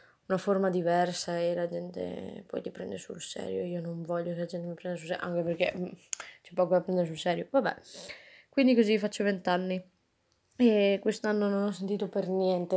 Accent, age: native, 20-39